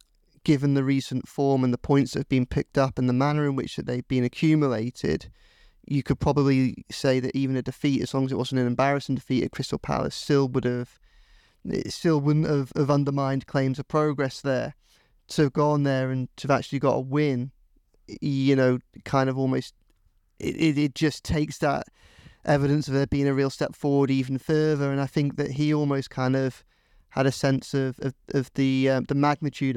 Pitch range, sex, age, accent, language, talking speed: 130-145 Hz, male, 30-49, British, English, 200 wpm